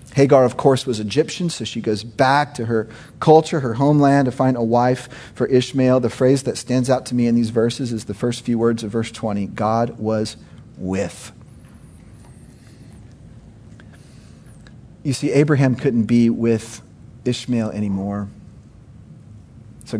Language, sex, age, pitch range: English, male, 40-59, 120-155 Hz